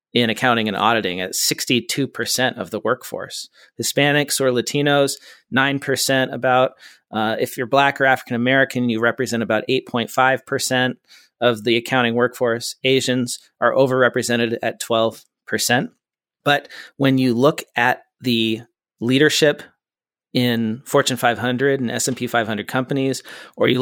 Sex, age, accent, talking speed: male, 40-59, American, 145 wpm